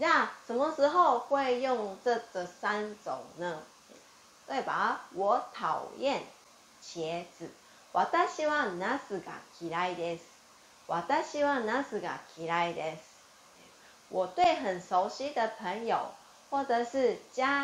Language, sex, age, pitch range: Chinese, female, 30-49, 175-275 Hz